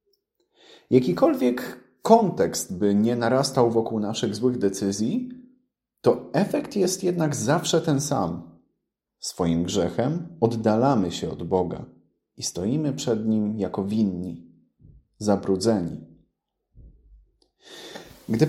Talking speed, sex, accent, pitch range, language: 95 wpm, male, native, 95-160 Hz, Polish